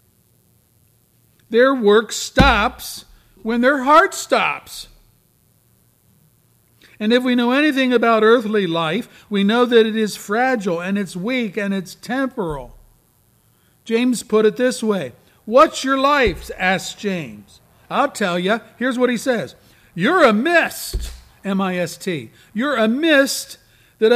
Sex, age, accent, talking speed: male, 50-69, American, 130 wpm